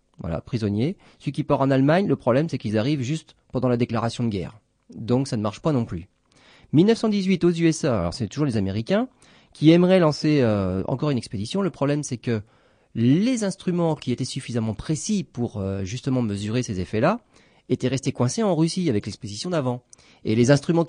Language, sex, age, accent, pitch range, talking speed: French, male, 30-49, French, 110-160 Hz, 190 wpm